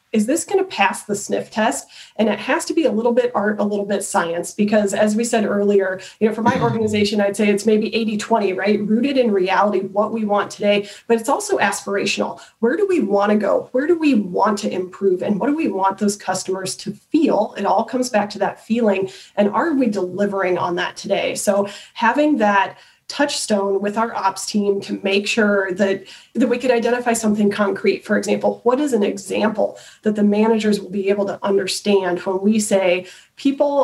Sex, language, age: female, English, 30-49